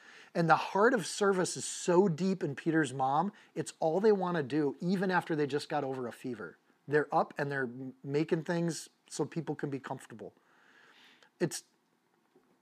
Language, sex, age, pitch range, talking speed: English, male, 30-49, 135-170 Hz, 175 wpm